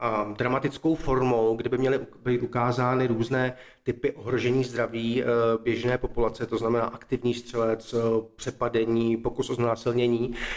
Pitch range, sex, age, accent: 115-135 Hz, male, 40-59, native